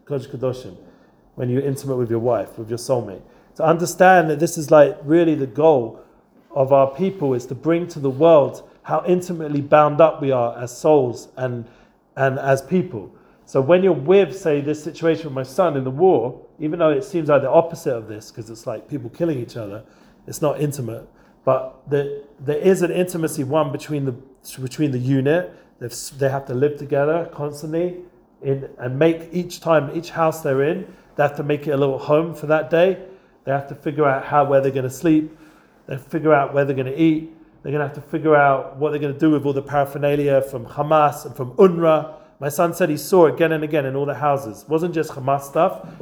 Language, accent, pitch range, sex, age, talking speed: English, British, 135-160 Hz, male, 40-59, 220 wpm